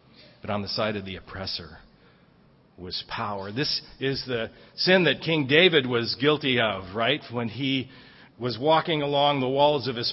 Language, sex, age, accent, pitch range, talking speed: English, male, 50-69, American, 110-140 Hz, 165 wpm